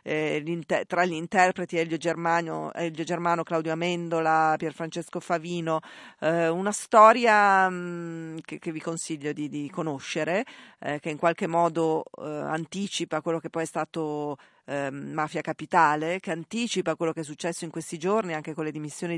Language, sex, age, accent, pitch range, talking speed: Italian, female, 40-59, native, 155-175 Hz, 150 wpm